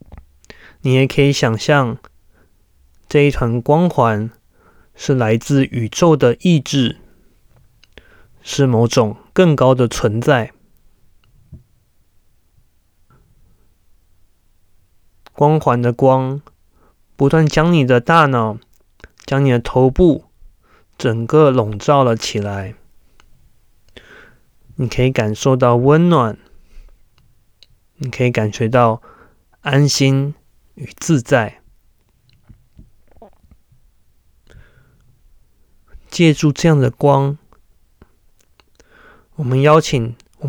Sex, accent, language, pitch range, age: male, native, Chinese, 110-140 Hz, 20-39